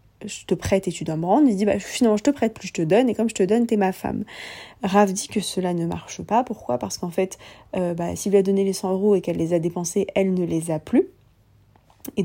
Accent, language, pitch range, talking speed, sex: French, French, 180-220 Hz, 290 wpm, female